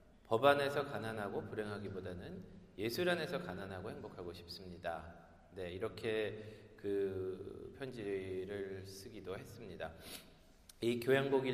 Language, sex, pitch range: Korean, male, 95-135 Hz